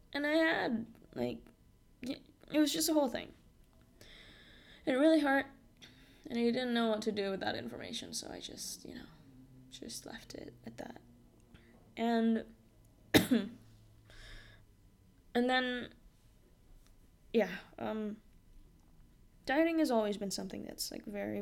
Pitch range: 190-255 Hz